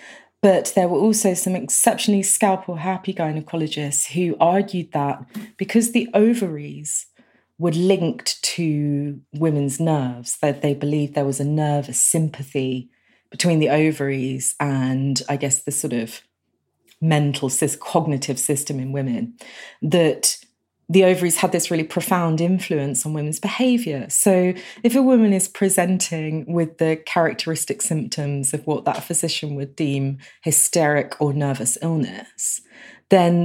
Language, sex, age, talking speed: English, female, 30-49, 130 wpm